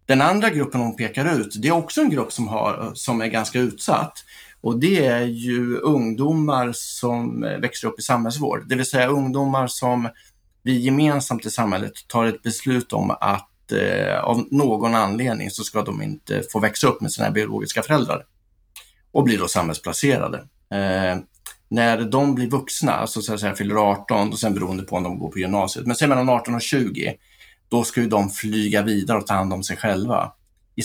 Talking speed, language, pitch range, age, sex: 190 wpm, Swedish, 105-130 Hz, 30-49, male